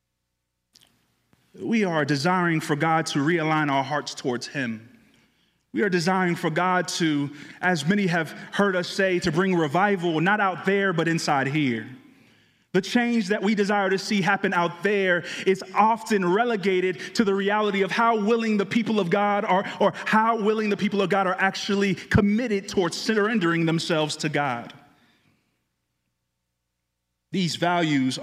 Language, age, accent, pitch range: English, 30-49, American, 145-195 Hz